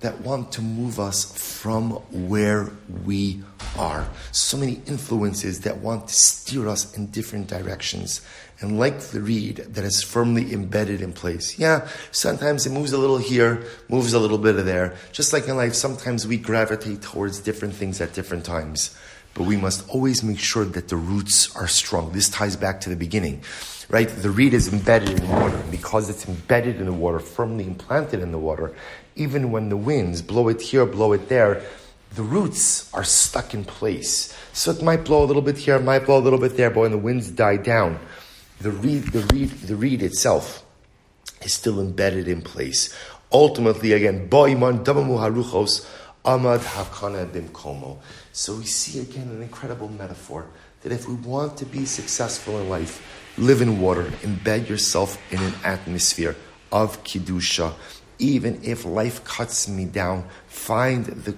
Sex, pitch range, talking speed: male, 95-120 Hz, 180 wpm